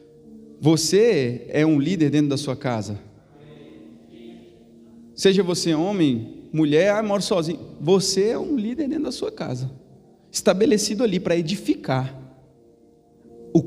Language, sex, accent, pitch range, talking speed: Portuguese, male, Brazilian, 120-190 Hz, 120 wpm